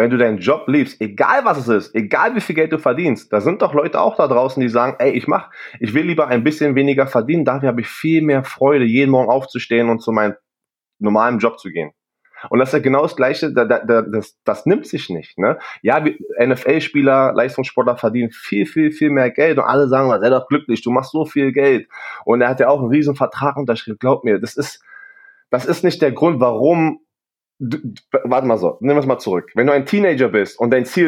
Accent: German